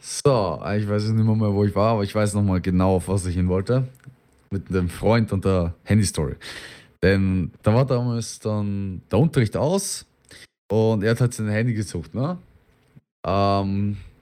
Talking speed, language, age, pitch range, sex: 180 wpm, German, 20-39, 95-115 Hz, male